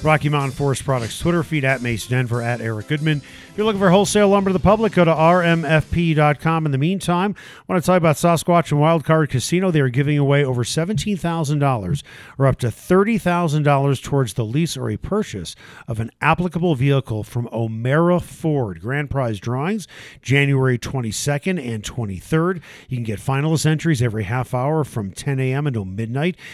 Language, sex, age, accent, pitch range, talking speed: English, male, 50-69, American, 115-160 Hz, 180 wpm